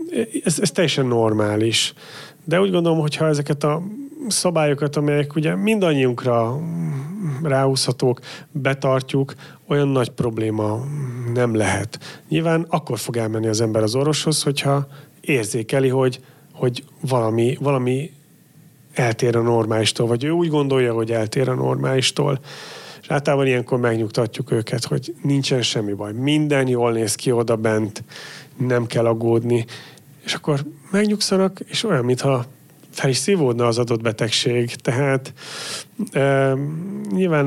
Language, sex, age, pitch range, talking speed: Hungarian, male, 30-49, 120-150 Hz, 125 wpm